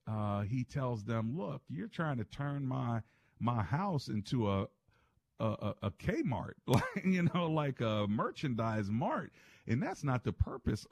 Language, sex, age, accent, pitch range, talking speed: English, male, 50-69, American, 100-125 Hz, 150 wpm